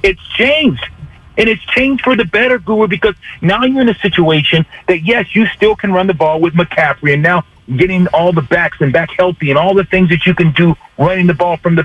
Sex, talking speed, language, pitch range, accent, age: male, 240 wpm, English, 170-210 Hz, American, 50-69